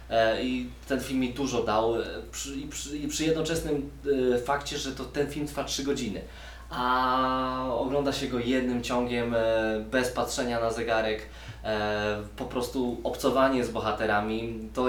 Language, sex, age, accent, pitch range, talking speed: Polish, male, 20-39, native, 105-130 Hz, 155 wpm